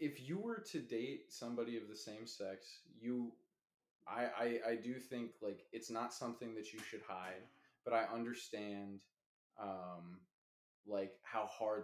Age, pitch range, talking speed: 20-39, 105-135 Hz, 155 wpm